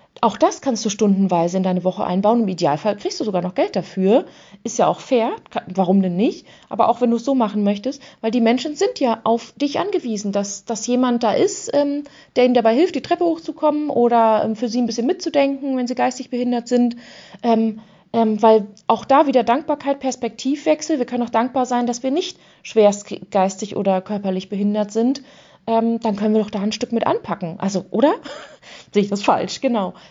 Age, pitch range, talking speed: 30-49, 215-270 Hz, 205 wpm